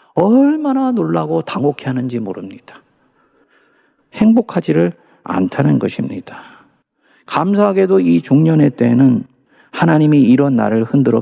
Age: 50-69